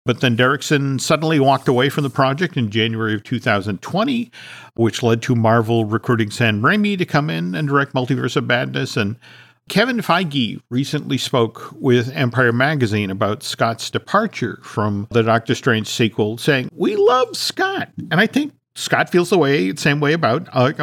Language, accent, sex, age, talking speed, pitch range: English, American, male, 50-69, 170 wpm, 120-170 Hz